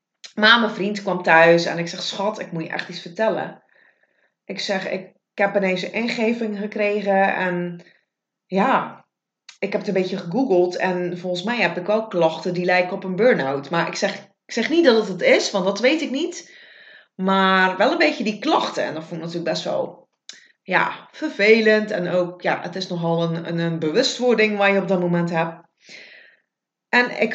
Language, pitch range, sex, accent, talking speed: English, 180-235 Hz, female, Dutch, 200 wpm